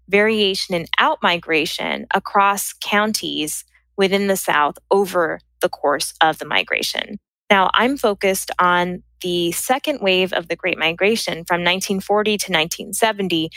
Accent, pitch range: American, 170-210 Hz